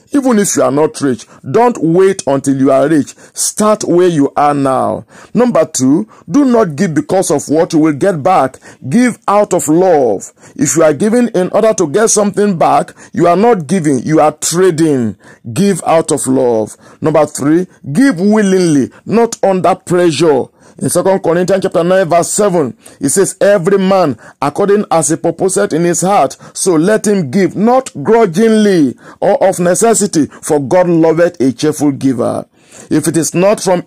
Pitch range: 150-195 Hz